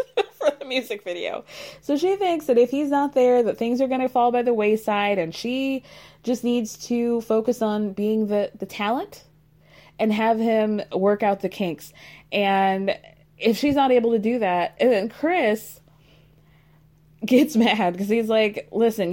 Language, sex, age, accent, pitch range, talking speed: English, female, 20-39, American, 175-250 Hz, 175 wpm